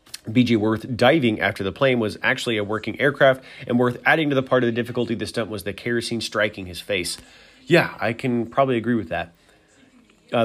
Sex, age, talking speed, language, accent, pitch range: male, 30-49, 205 wpm, English, American, 105-135 Hz